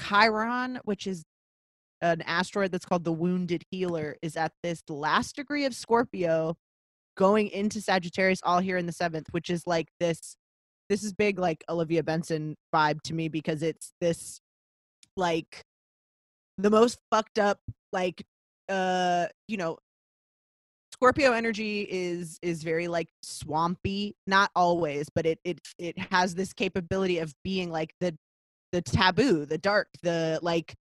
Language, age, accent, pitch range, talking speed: English, 20-39, American, 165-200 Hz, 145 wpm